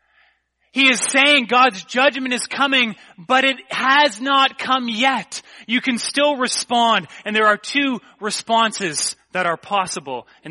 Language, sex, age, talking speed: English, male, 30-49, 150 wpm